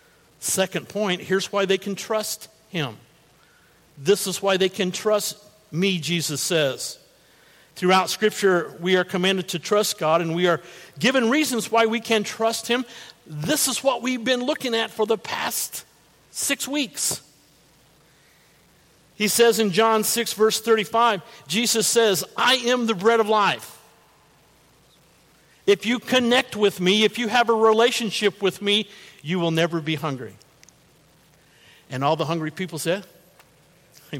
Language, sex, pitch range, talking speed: English, male, 175-225 Hz, 150 wpm